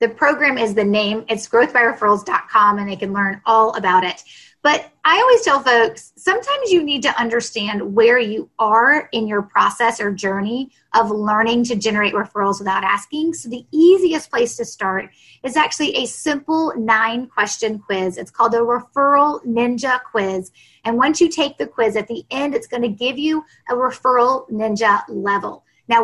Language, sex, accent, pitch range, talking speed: English, female, American, 210-280 Hz, 175 wpm